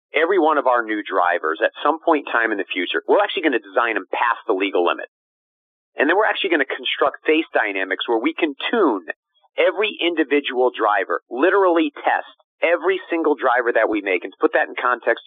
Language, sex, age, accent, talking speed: English, male, 40-59, American, 210 wpm